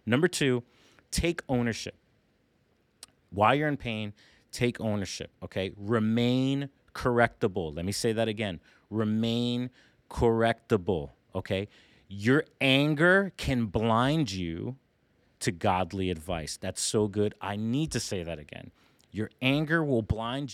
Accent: American